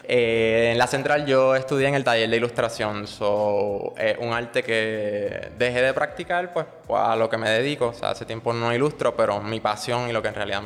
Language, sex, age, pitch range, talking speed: English, male, 20-39, 110-130 Hz, 225 wpm